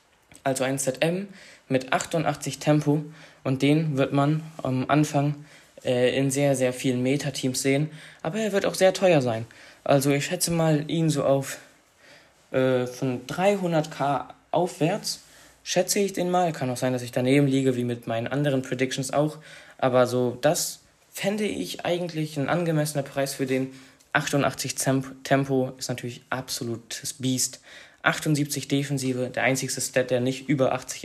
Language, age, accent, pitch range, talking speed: German, 20-39, German, 130-155 Hz, 155 wpm